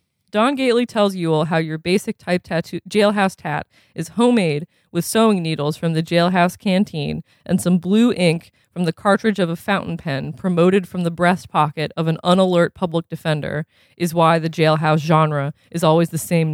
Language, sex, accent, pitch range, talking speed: English, female, American, 160-200 Hz, 180 wpm